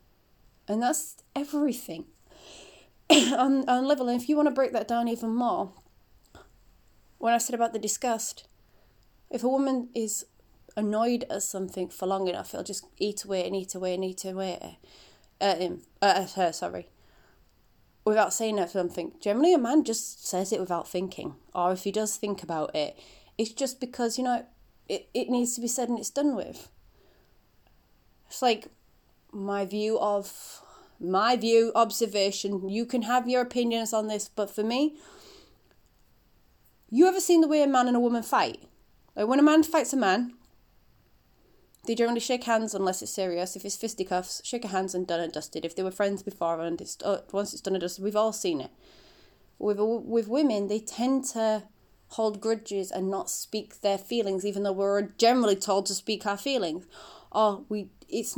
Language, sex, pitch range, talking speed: English, female, 190-245 Hz, 180 wpm